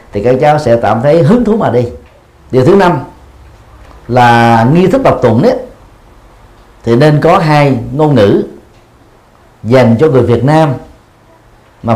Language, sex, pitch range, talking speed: Vietnamese, male, 115-150 Hz, 155 wpm